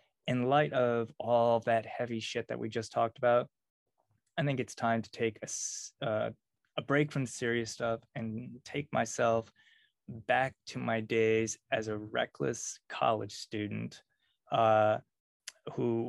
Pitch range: 105-120 Hz